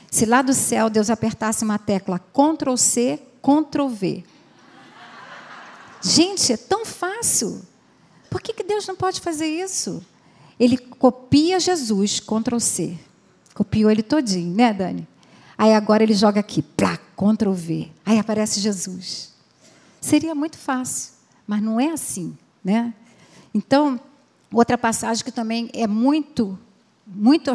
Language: Portuguese